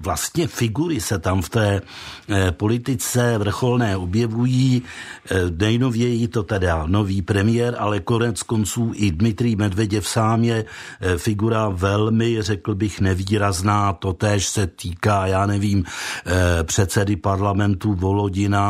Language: Czech